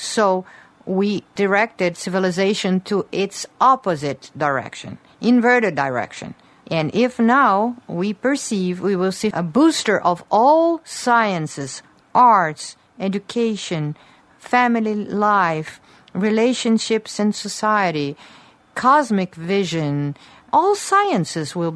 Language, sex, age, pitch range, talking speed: English, female, 50-69, 160-230 Hz, 95 wpm